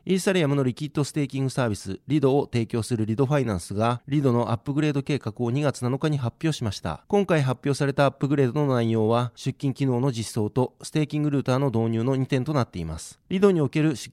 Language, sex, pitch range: Japanese, male, 120-145 Hz